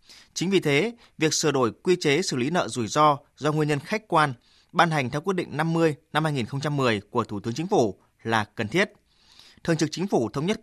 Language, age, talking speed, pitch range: Vietnamese, 20-39, 225 wpm, 125-165 Hz